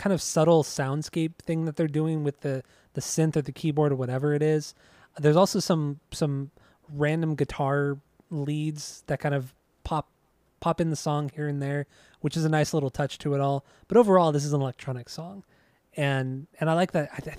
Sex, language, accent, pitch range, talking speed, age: male, English, American, 135-160 Hz, 205 wpm, 20-39